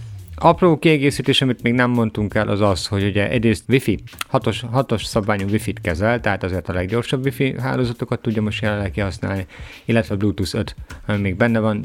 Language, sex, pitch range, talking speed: Hungarian, male, 90-115 Hz, 170 wpm